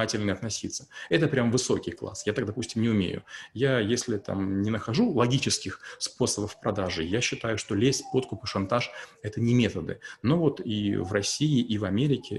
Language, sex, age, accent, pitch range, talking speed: Russian, male, 30-49, native, 105-135 Hz, 175 wpm